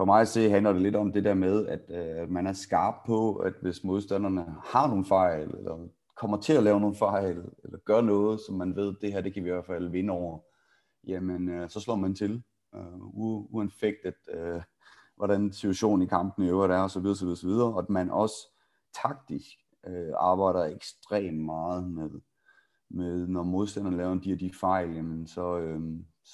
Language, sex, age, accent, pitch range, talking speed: Danish, male, 30-49, native, 90-105 Hz, 195 wpm